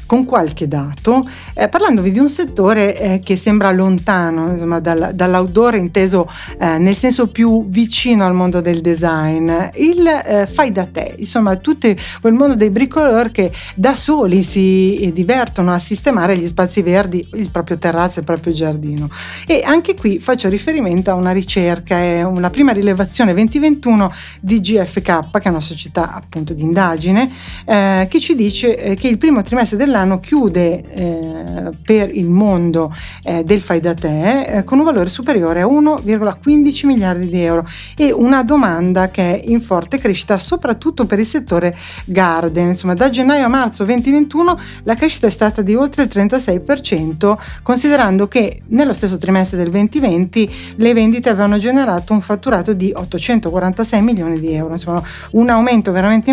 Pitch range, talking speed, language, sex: 180-240 Hz, 165 wpm, Italian, female